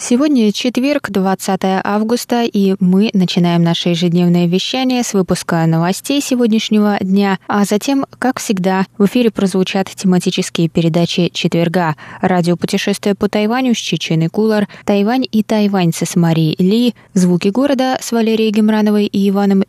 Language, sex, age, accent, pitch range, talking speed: Russian, female, 20-39, native, 170-210 Hz, 135 wpm